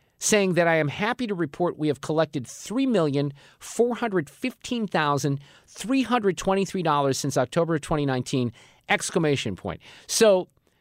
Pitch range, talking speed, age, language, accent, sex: 135-195 Hz, 100 wpm, 40-59, English, American, male